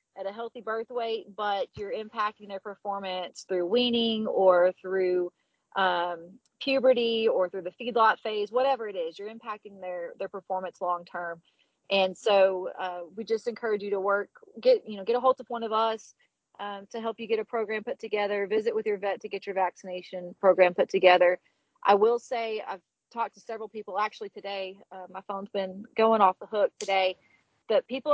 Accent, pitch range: American, 190-230 Hz